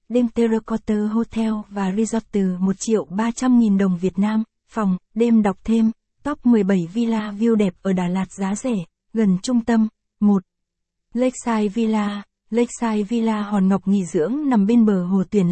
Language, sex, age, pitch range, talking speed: Vietnamese, female, 20-39, 195-230 Hz, 165 wpm